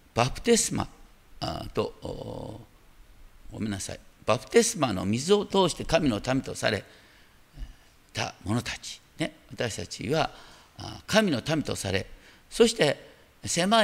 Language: Japanese